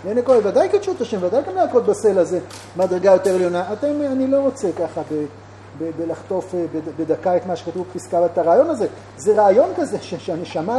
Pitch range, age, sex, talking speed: 175-295 Hz, 40-59, male, 185 wpm